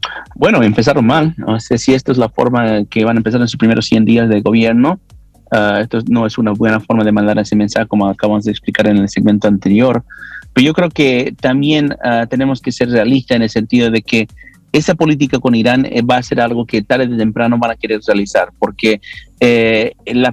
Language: English